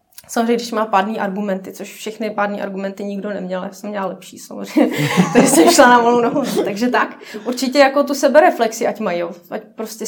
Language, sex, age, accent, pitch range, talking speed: Czech, female, 20-39, native, 200-245 Hz, 190 wpm